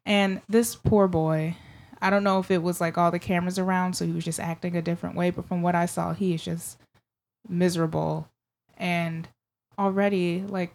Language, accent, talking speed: English, American, 195 wpm